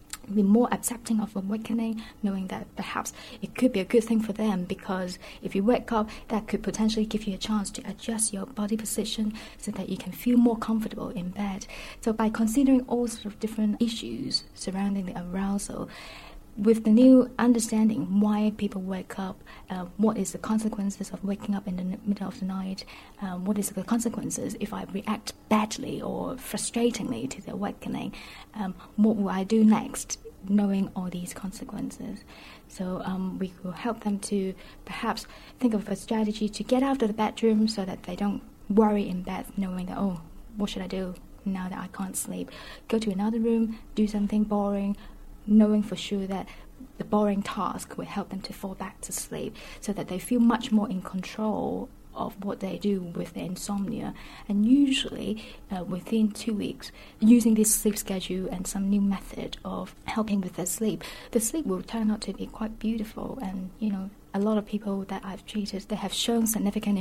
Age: 20-39